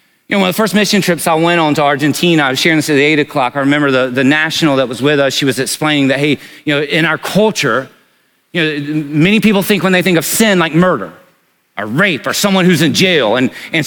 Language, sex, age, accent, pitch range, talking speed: English, male, 40-59, American, 175-240 Hz, 265 wpm